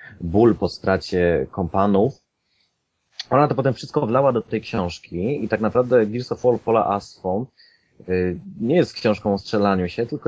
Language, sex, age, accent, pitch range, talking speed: Polish, male, 30-49, native, 90-105 Hz, 160 wpm